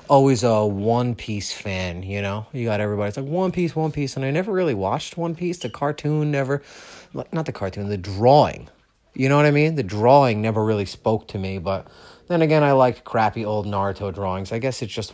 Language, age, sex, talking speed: English, 30-49, male, 220 wpm